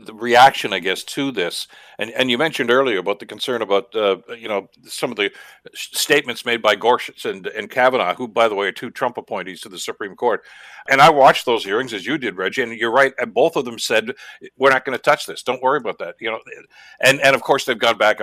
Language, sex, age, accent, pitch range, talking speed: English, male, 60-79, American, 120-170 Hz, 255 wpm